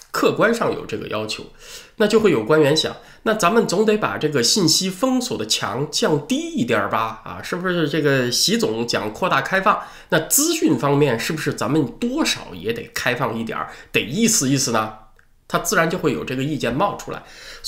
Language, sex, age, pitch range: Chinese, male, 20-39, 120-205 Hz